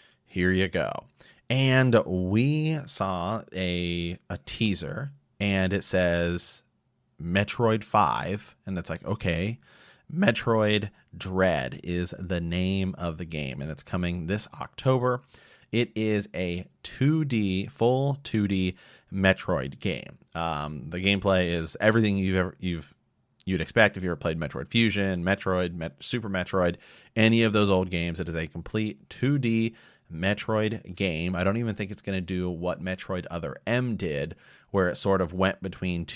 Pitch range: 90-110 Hz